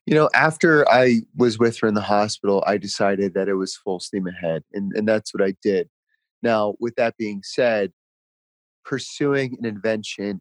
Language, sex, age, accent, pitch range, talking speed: English, male, 30-49, American, 100-120 Hz, 185 wpm